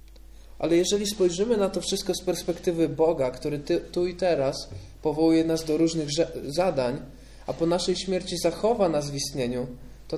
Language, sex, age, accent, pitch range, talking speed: Polish, male, 20-39, native, 130-175 Hz, 160 wpm